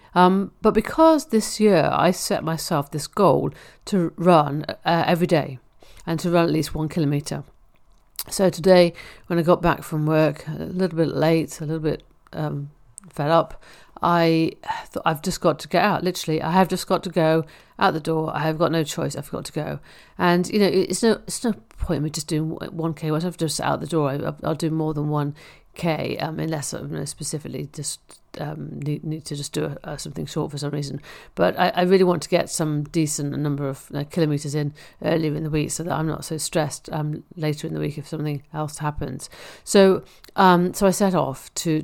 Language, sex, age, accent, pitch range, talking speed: English, female, 50-69, British, 150-175 Hz, 220 wpm